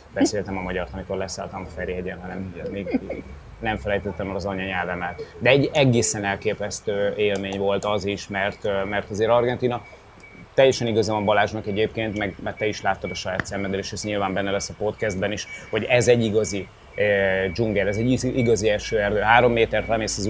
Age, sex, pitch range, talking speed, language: 30-49, male, 95-115 Hz, 185 wpm, Hungarian